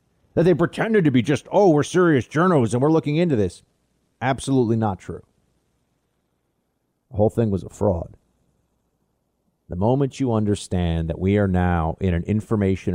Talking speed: 160 wpm